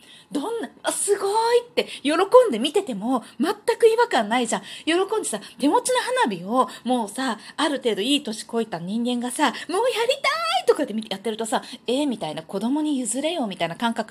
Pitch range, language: 220-345 Hz, Japanese